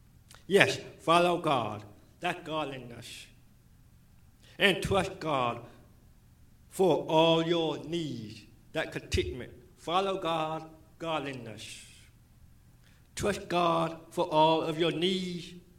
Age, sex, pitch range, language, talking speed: 60-79, male, 130-180 Hz, English, 90 wpm